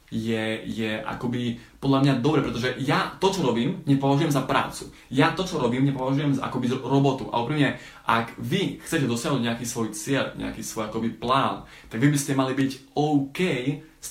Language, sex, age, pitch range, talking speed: Slovak, male, 20-39, 125-145 Hz, 185 wpm